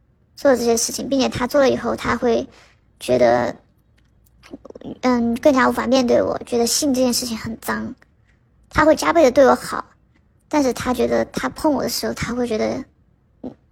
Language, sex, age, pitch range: Chinese, male, 20-39, 240-275 Hz